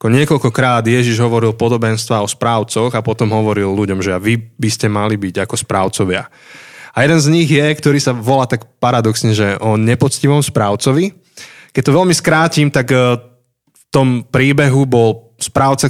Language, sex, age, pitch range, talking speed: Slovak, male, 20-39, 115-145 Hz, 160 wpm